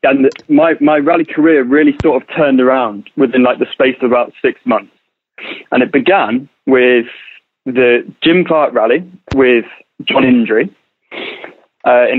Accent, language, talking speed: British, English, 155 wpm